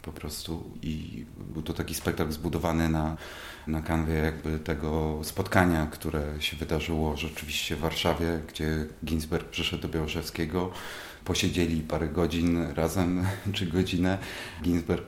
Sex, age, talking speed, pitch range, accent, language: male, 30-49, 125 wpm, 80-95 Hz, native, Polish